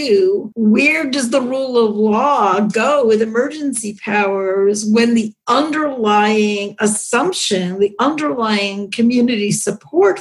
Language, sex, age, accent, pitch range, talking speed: English, female, 50-69, American, 200-235 Hz, 105 wpm